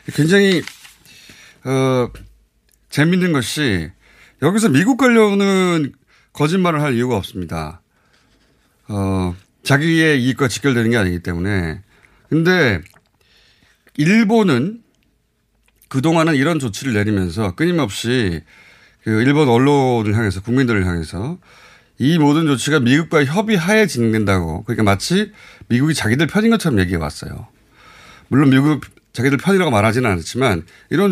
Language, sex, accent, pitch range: Korean, male, native, 105-175 Hz